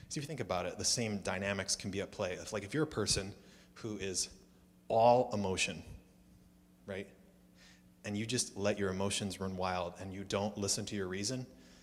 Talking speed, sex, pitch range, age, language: 200 wpm, male, 95-110 Hz, 30-49, English